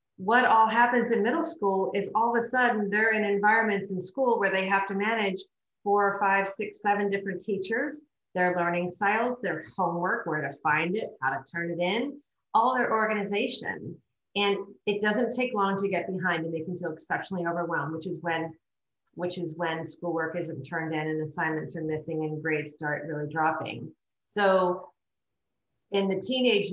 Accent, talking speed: American, 180 wpm